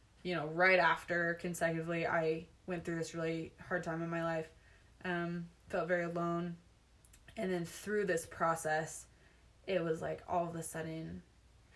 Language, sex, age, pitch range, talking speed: English, female, 20-39, 165-195 Hz, 160 wpm